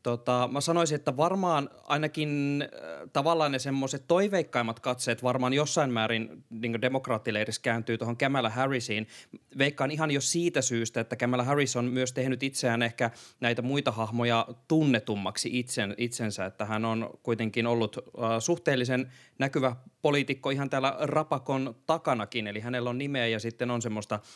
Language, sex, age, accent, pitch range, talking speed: Finnish, male, 20-39, native, 115-140 Hz, 145 wpm